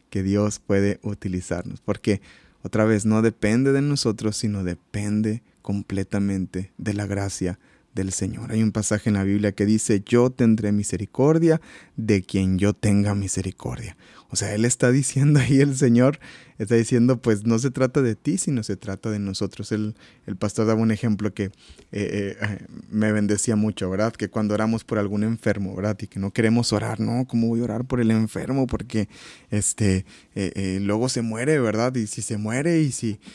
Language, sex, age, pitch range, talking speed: Spanish, male, 30-49, 100-120 Hz, 185 wpm